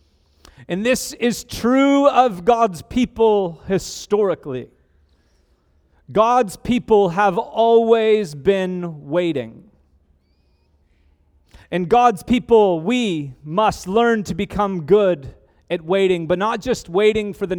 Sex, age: male, 30-49